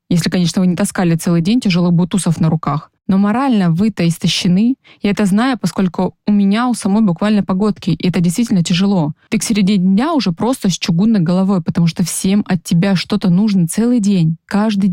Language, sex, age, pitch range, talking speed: Russian, female, 20-39, 175-220 Hz, 195 wpm